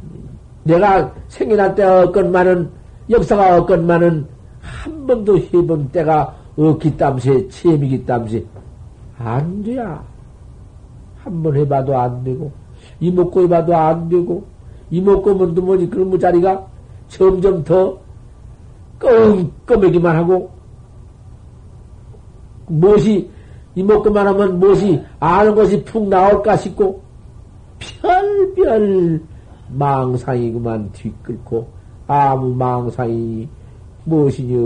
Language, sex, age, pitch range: Korean, male, 60-79, 115-180 Hz